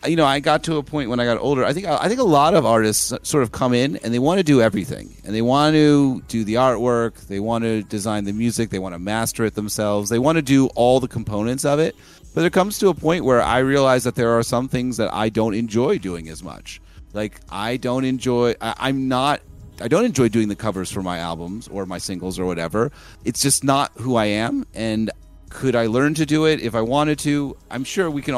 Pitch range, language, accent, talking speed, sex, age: 100-130 Hz, English, American, 250 wpm, male, 30-49